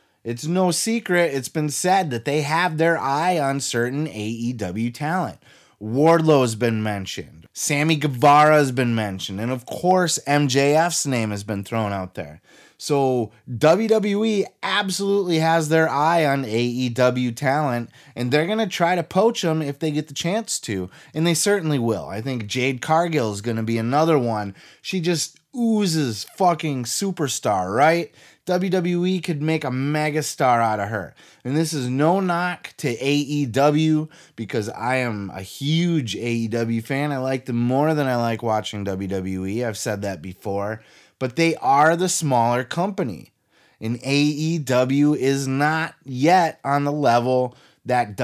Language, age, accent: English, 30-49, American